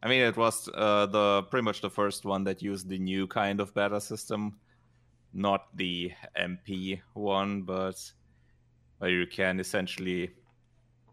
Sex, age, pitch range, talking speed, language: male, 30-49, 95-120 Hz, 150 wpm, English